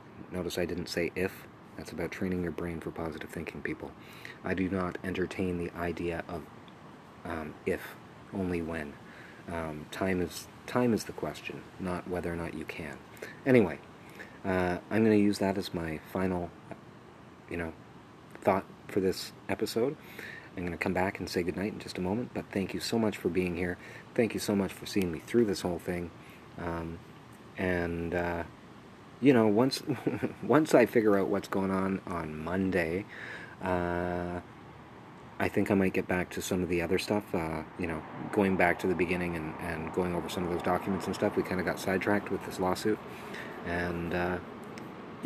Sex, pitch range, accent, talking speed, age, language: male, 85-95 Hz, American, 185 wpm, 30-49, English